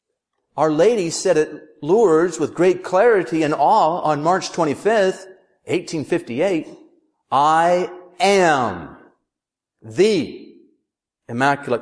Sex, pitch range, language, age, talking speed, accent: male, 150-225 Hz, Dutch, 40-59, 90 wpm, American